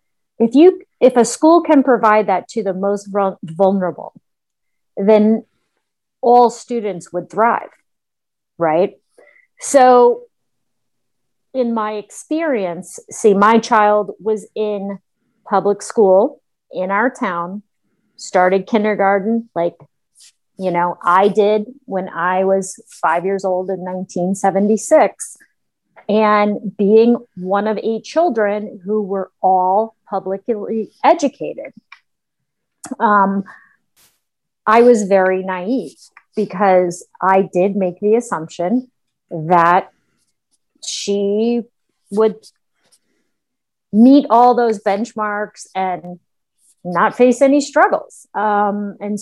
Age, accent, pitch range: 30-49, American, 190-230 Hz